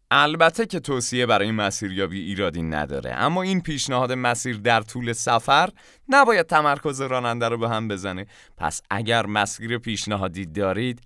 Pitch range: 100-140 Hz